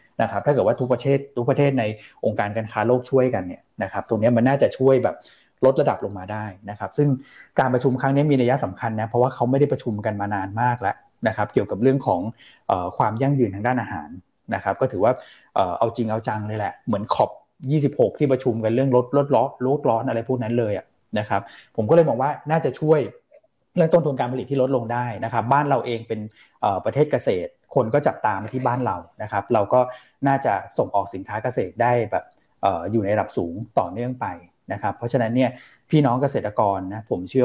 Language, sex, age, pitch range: Thai, male, 20-39, 110-135 Hz